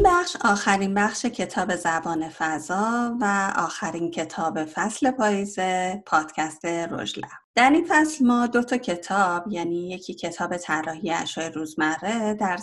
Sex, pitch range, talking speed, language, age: female, 170-215 Hz, 130 wpm, Persian, 30-49